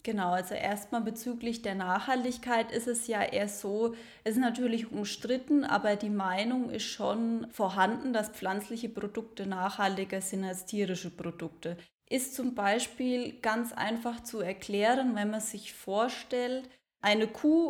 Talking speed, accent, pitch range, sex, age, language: 140 wpm, German, 195-235 Hz, female, 20-39, German